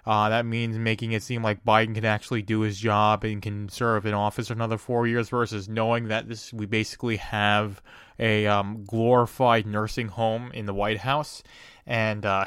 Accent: American